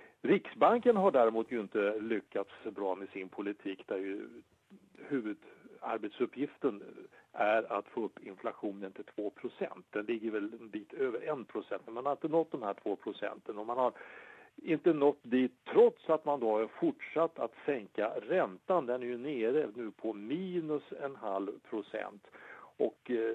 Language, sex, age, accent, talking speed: English, male, 60-79, Norwegian, 155 wpm